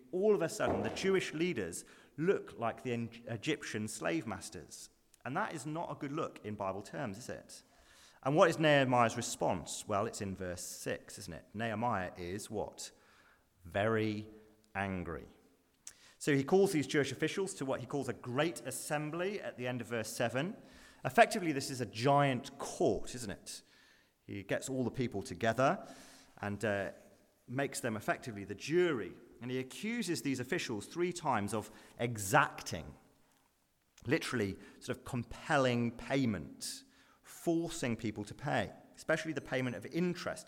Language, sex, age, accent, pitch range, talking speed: English, male, 30-49, British, 110-155 Hz, 155 wpm